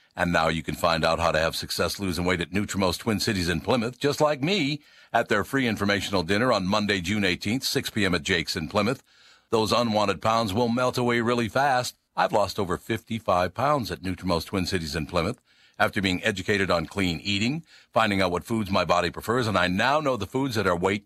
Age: 60-79